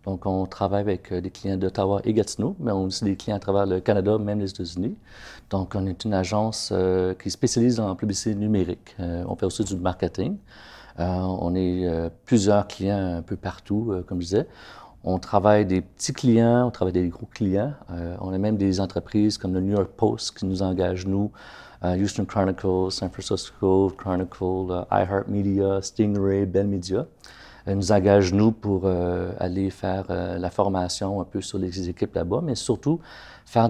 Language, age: French, 40-59